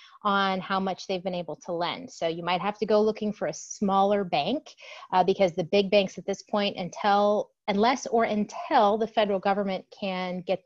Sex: female